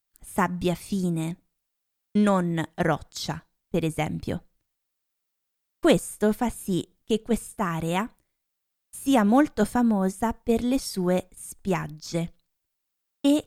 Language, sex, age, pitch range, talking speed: Italian, female, 20-39, 175-220 Hz, 85 wpm